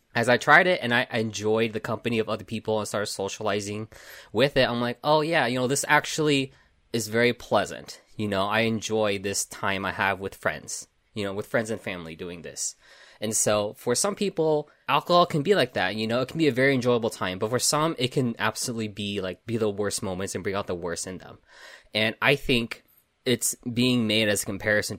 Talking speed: 225 wpm